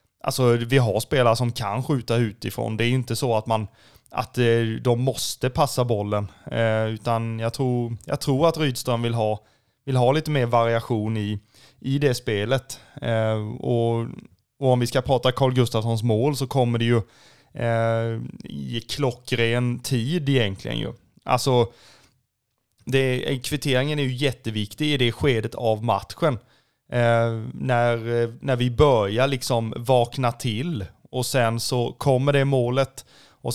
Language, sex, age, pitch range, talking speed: Swedish, male, 20-39, 115-130 Hz, 150 wpm